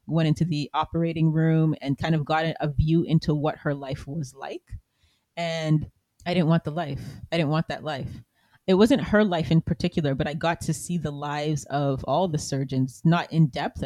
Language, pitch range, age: English, 140-165 Hz, 30-49